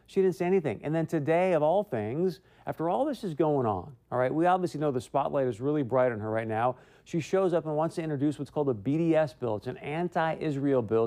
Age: 40-59